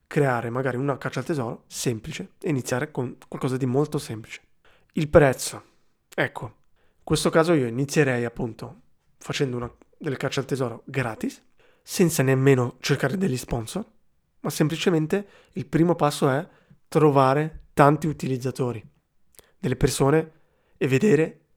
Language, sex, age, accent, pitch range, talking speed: Italian, male, 20-39, native, 130-160 Hz, 135 wpm